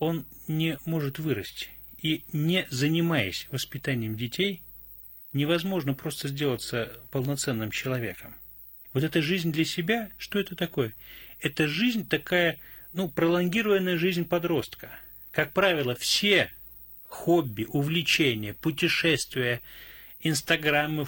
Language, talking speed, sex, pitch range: Russian, 100 wpm, male, 120-160 Hz